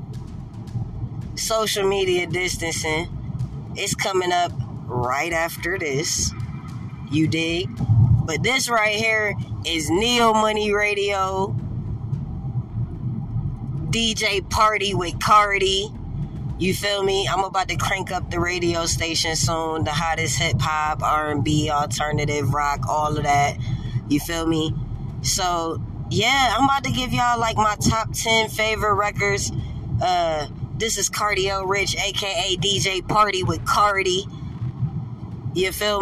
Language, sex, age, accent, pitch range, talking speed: English, female, 20-39, American, 130-185 Hz, 120 wpm